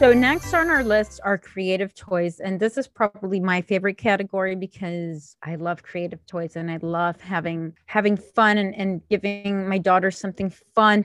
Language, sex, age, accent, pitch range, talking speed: English, female, 30-49, American, 190-225 Hz, 180 wpm